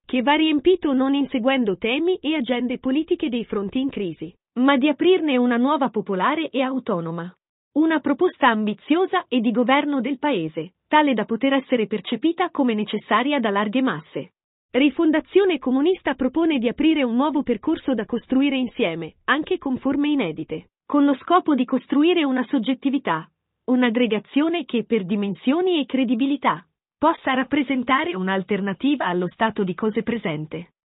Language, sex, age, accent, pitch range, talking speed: Italian, female, 40-59, native, 215-295 Hz, 145 wpm